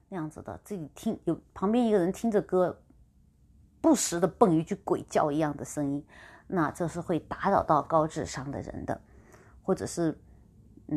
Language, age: Chinese, 30-49